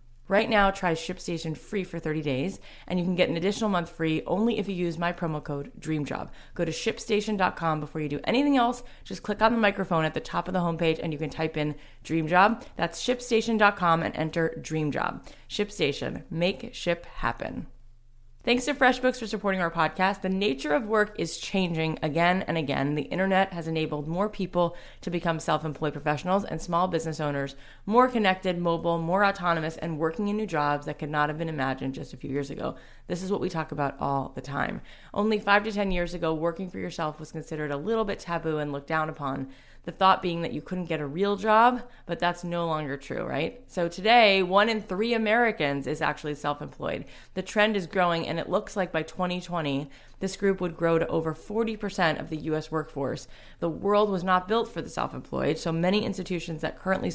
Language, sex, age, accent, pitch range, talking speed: English, female, 20-39, American, 155-195 Hz, 205 wpm